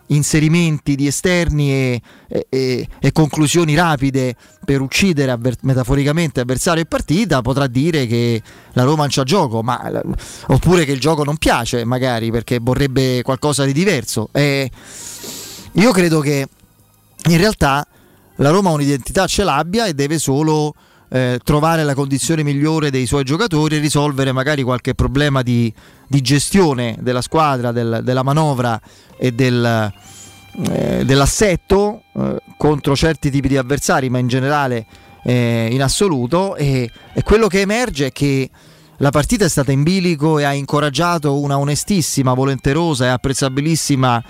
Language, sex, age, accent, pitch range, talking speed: Italian, male, 30-49, native, 125-155 Hz, 140 wpm